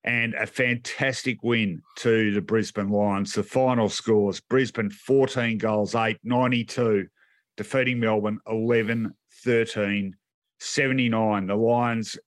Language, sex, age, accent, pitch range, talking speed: English, male, 50-69, Australian, 105-125 Hz, 100 wpm